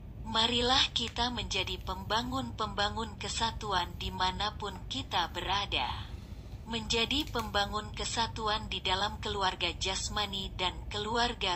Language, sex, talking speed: Indonesian, female, 95 wpm